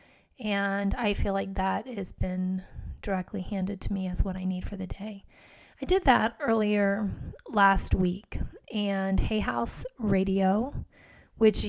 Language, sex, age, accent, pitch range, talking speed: English, female, 30-49, American, 195-220 Hz, 150 wpm